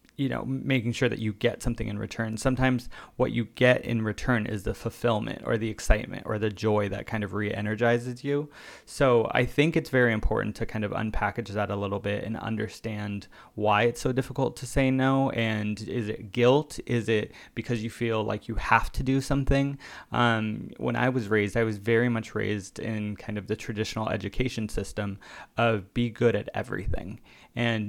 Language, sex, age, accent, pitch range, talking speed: English, male, 20-39, American, 105-120 Hz, 195 wpm